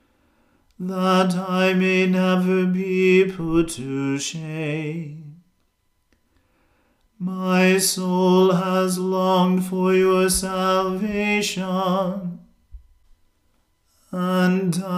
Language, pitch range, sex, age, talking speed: English, 175-185 Hz, male, 40-59, 65 wpm